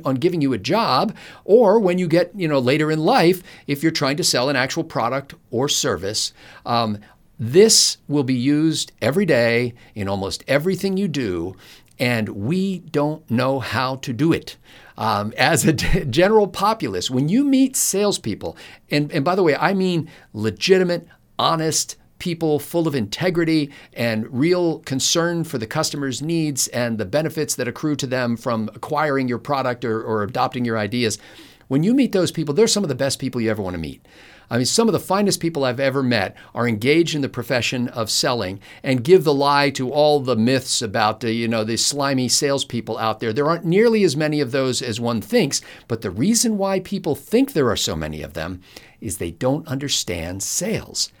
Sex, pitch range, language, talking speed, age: male, 120-165 Hz, English, 195 wpm, 50-69